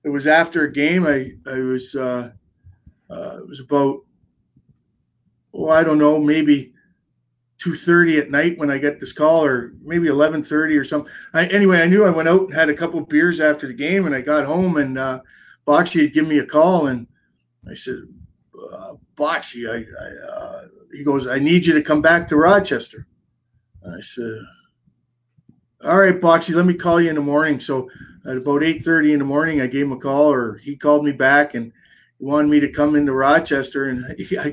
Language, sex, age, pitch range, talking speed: English, male, 50-69, 135-165 Hz, 205 wpm